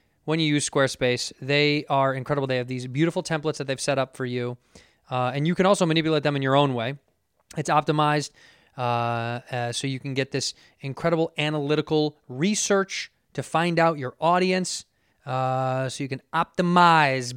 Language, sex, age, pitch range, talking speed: English, male, 20-39, 130-160 Hz, 175 wpm